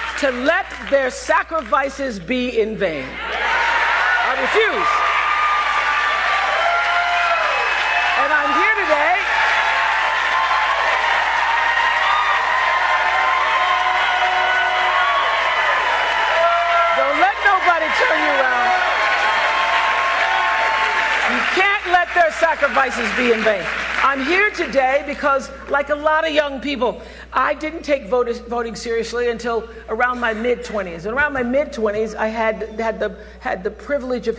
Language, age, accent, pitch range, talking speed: English, 50-69, American, 220-300 Hz, 105 wpm